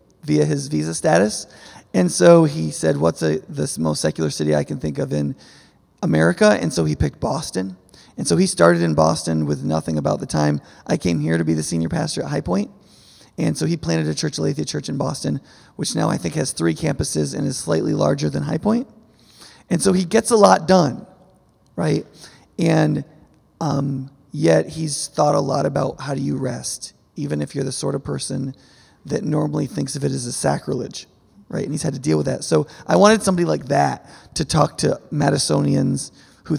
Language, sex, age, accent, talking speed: English, male, 30-49, American, 205 wpm